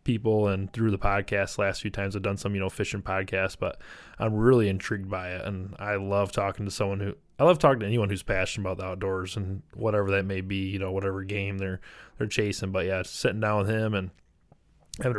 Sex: male